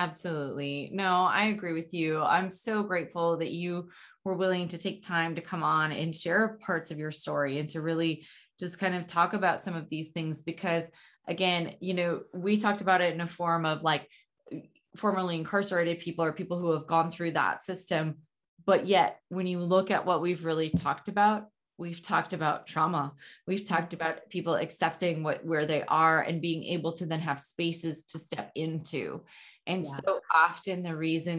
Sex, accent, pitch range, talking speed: female, American, 160-185 Hz, 190 wpm